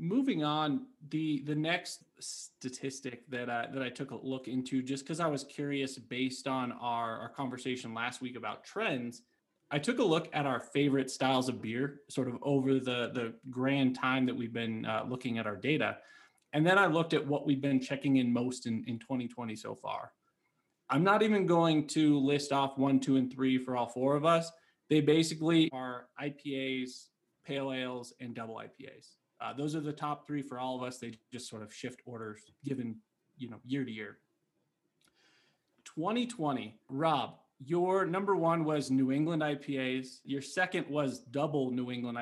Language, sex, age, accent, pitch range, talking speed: English, male, 20-39, American, 125-150 Hz, 185 wpm